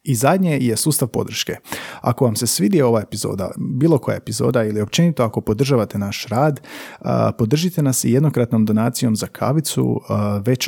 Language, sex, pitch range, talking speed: Croatian, male, 110-135 Hz, 155 wpm